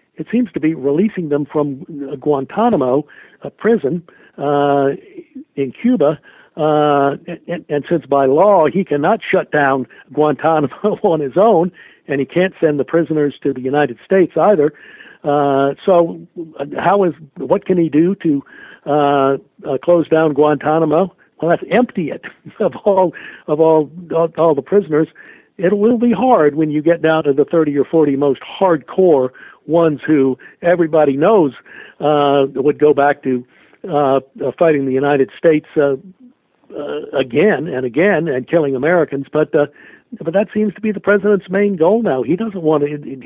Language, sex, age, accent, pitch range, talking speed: English, male, 60-79, American, 145-185 Hz, 165 wpm